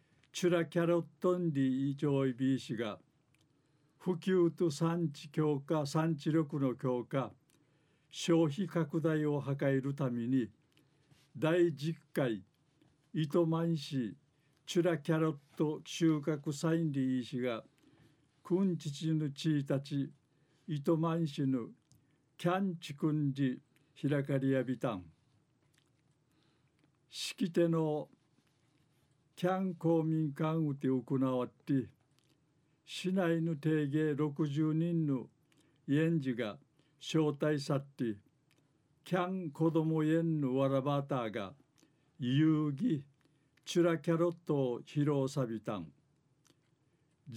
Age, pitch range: 50-69, 140-160 Hz